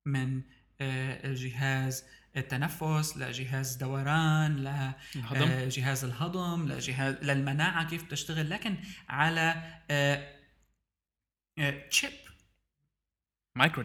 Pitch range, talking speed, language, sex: 135-175 Hz, 60 wpm, Arabic, male